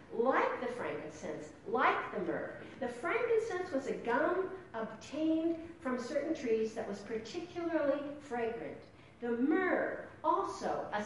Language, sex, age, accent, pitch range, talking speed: English, female, 50-69, American, 220-315 Hz, 125 wpm